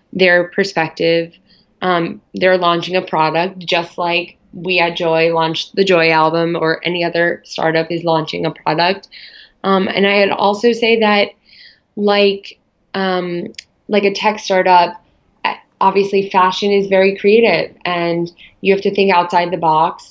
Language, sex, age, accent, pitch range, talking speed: English, female, 20-39, American, 170-195 Hz, 150 wpm